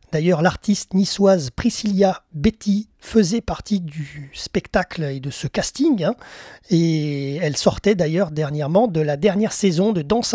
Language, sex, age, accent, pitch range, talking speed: French, male, 30-49, French, 165-205 Hz, 145 wpm